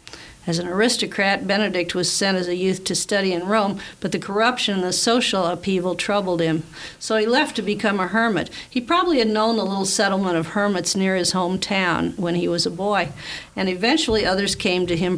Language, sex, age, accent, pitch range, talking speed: English, female, 50-69, American, 175-205 Hz, 205 wpm